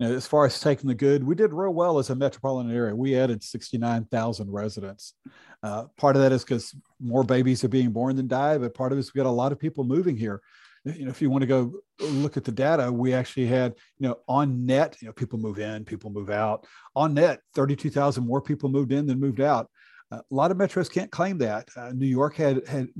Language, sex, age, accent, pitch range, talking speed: English, male, 50-69, American, 120-145 Hz, 250 wpm